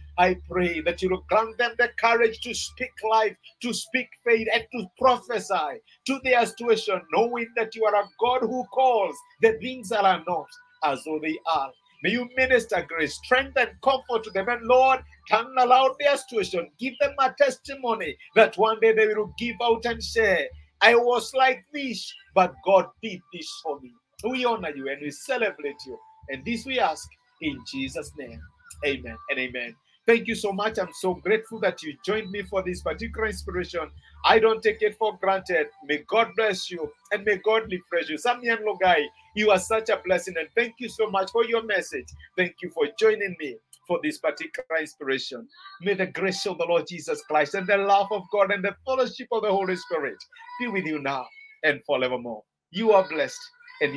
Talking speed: 195 wpm